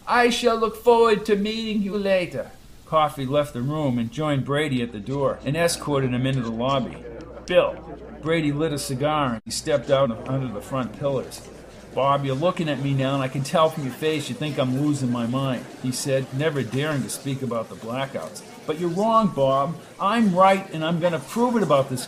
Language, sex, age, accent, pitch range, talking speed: English, male, 50-69, American, 135-190 Hz, 215 wpm